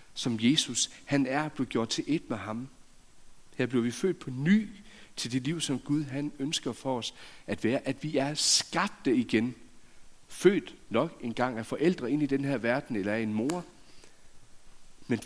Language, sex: Danish, male